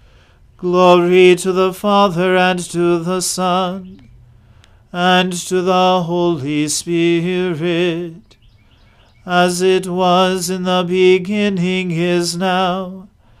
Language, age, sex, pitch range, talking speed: English, 40-59, male, 150-180 Hz, 95 wpm